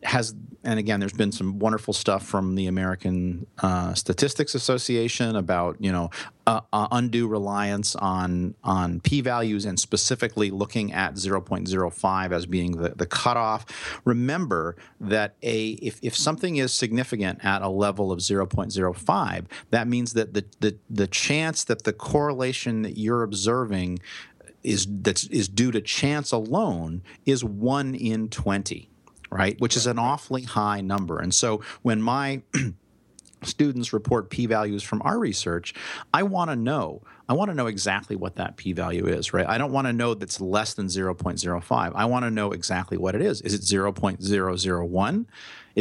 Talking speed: 160 wpm